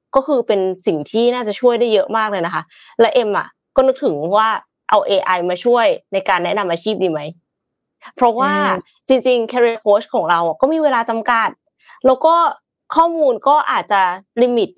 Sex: female